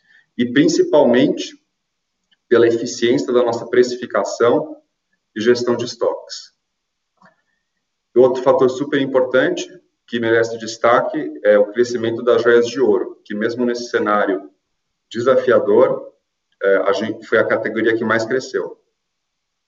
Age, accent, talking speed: 30-49, Brazilian, 110 wpm